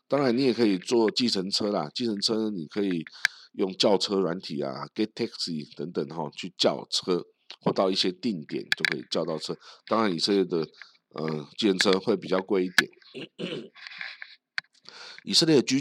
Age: 50-69